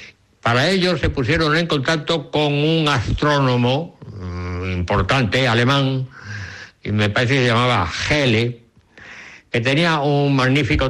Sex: male